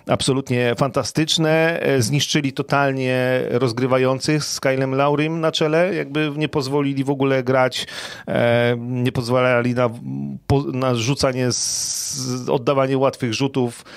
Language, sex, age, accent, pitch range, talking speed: Polish, male, 40-59, native, 115-145 Hz, 105 wpm